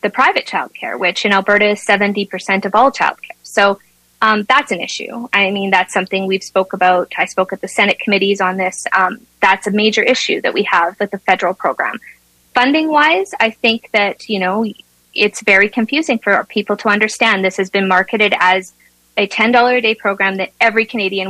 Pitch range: 190-225 Hz